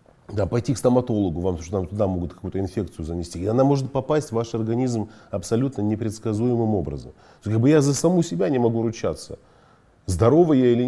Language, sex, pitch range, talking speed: Russian, male, 100-135 Hz, 190 wpm